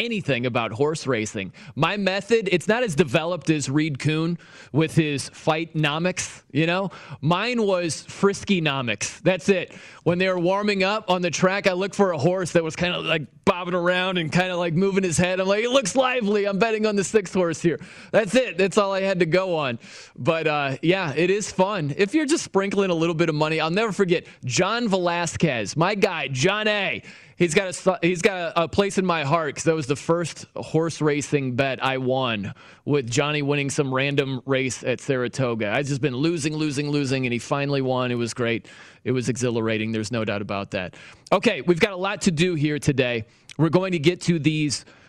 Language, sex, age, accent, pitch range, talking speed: English, male, 20-39, American, 140-185 Hz, 215 wpm